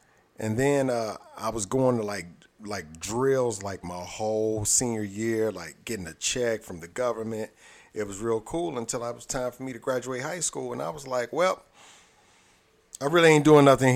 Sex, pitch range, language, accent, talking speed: male, 105-125 Hz, English, American, 200 wpm